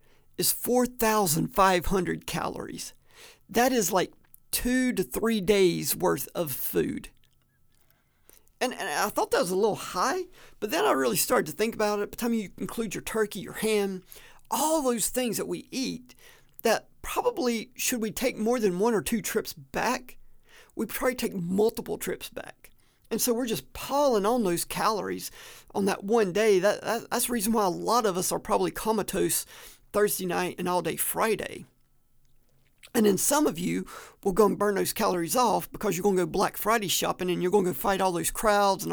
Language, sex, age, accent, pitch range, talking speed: English, male, 50-69, American, 190-235 Hz, 190 wpm